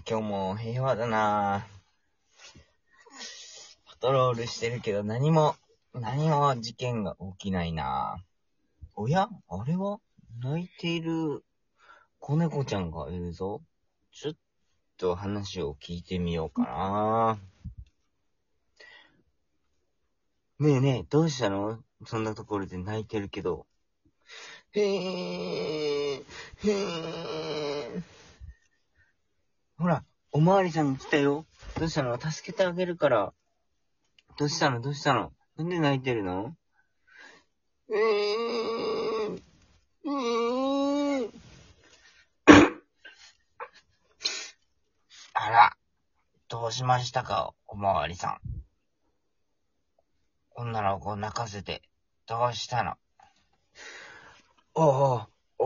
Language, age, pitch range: Japanese, 40-59, 100-155 Hz